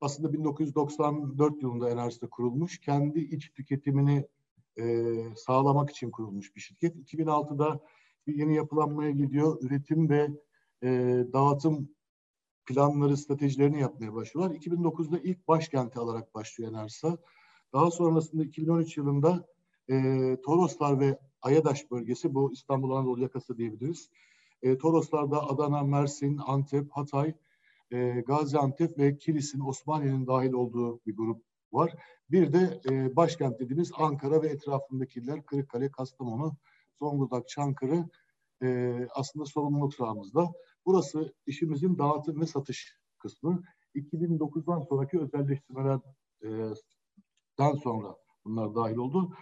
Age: 60-79